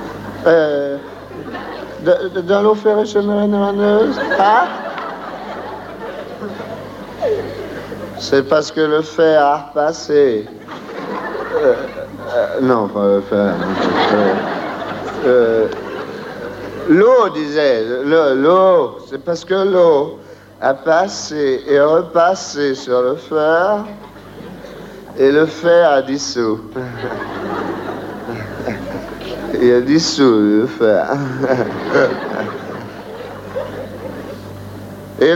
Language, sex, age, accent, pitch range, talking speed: French, male, 60-79, French, 145-215 Hz, 80 wpm